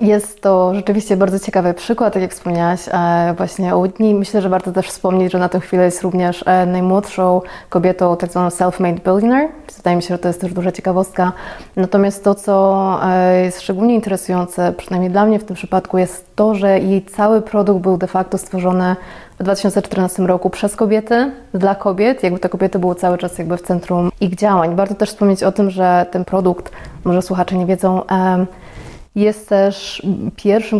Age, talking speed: 20-39, 180 wpm